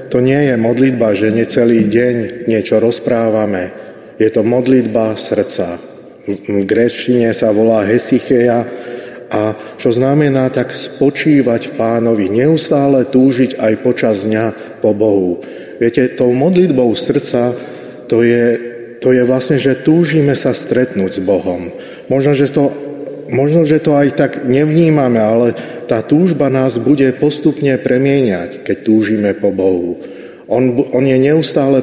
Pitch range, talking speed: 110-130 Hz, 135 wpm